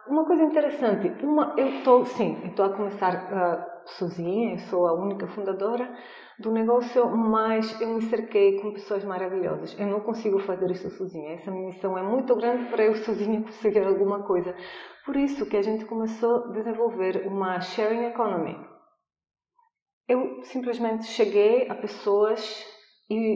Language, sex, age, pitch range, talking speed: Portuguese, female, 30-49, 195-235 Hz, 145 wpm